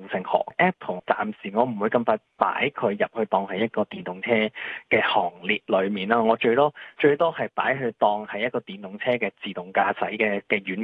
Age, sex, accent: 20-39, male, native